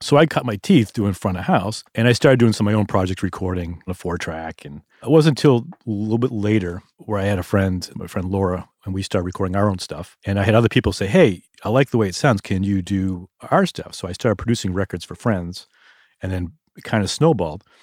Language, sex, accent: English, male, American